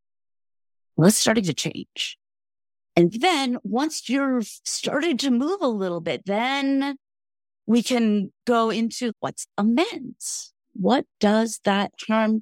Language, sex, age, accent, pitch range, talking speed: English, female, 30-49, American, 180-250 Hz, 120 wpm